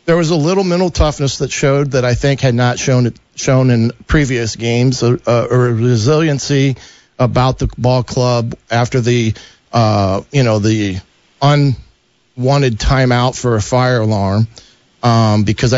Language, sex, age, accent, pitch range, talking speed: English, male, 40-59, American, 115-140 Hz, 150 wpm